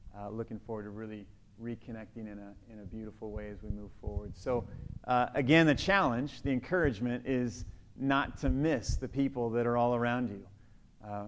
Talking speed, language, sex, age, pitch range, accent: 185 wpm, English, male, 40-59, 110-145 Hz, American